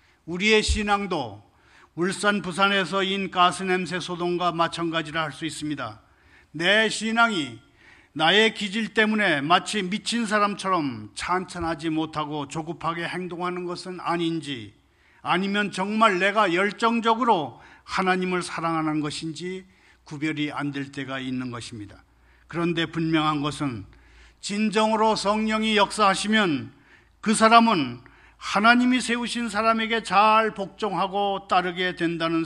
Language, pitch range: Korean, 160-210 Hz